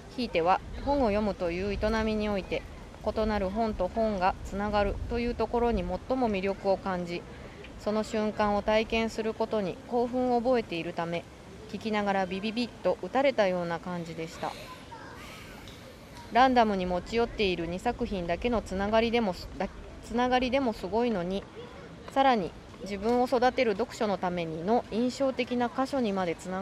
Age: 20-39